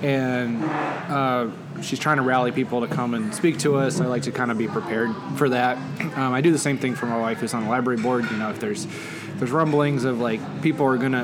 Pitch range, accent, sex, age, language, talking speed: 125-150 Hz, American, male, 20-39, English, 255 wpm